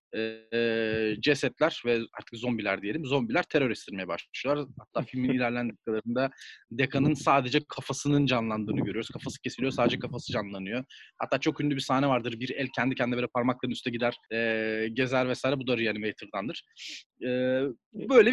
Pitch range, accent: 125-200 Hz, native